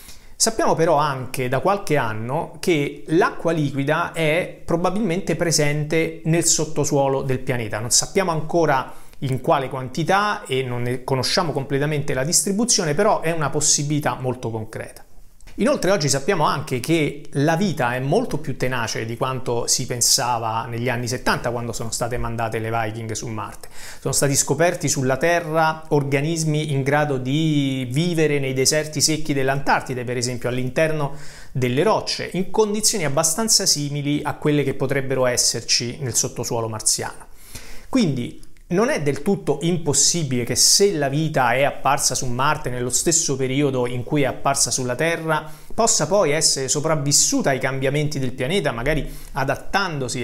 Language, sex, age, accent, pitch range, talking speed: Italian, male, 30-49, native, 130-160 Hz, 150 wpm